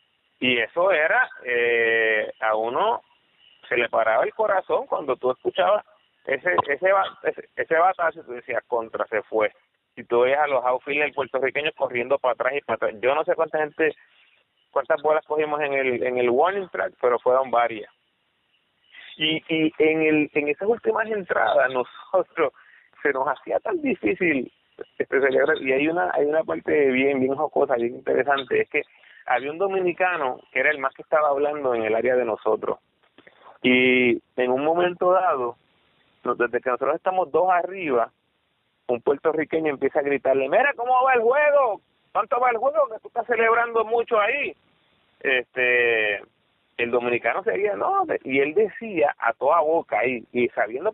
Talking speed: 165 wpm